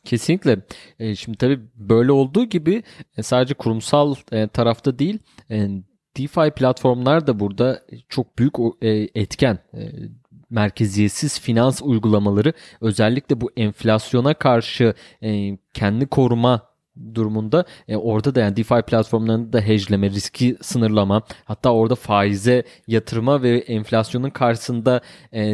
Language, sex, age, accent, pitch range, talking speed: Turkish, male, 30-49, native, 105-130 Hz, 100 wpm